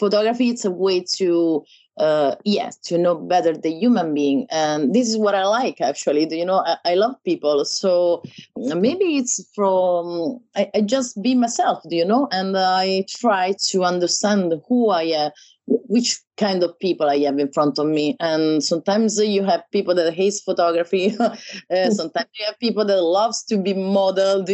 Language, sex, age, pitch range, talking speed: English, female, 30-49, 165-215 Hz, 190 wpm